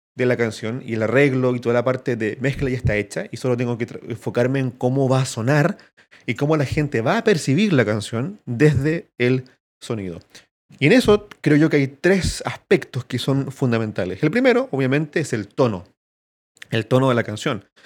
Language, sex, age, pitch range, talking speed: Spanish, male, 30-49, 115-140 Hz, 205 wpm